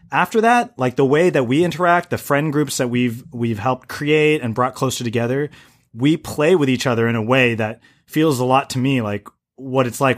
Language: English